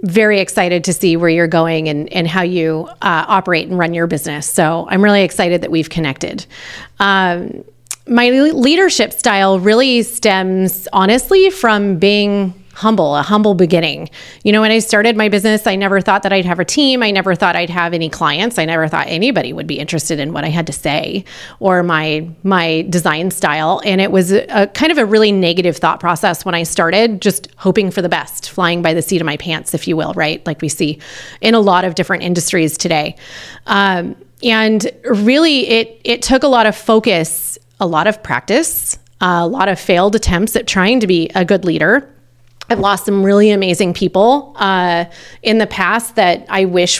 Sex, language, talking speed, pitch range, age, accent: female, English, 205 wpm, 175-225 Hz, 30-49, American